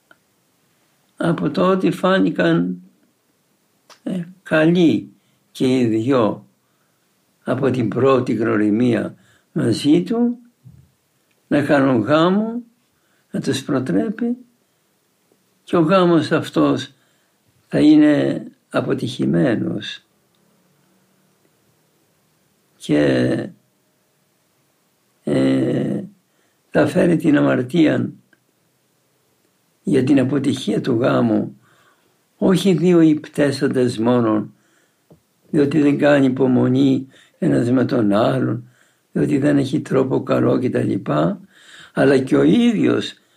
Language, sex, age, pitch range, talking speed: Greek, male, 60-79, 120-180 Hz, 80 wpm